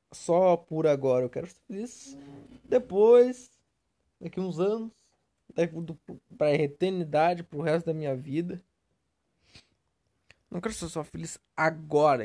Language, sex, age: Portuguese, male, 20-39